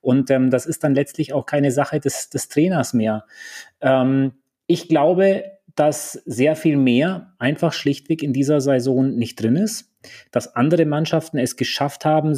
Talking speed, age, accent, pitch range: 165 wpm, 30-49, German, 130-160 Hz